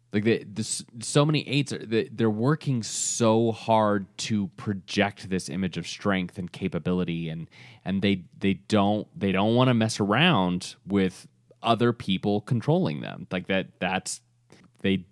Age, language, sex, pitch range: 20-39, English, male, 90-115 Hz